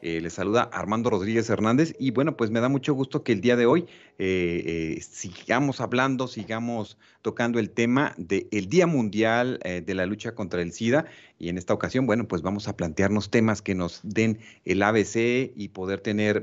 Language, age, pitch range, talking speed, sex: Spanish, 40-59, 95-120 Hz, 195 wpm, male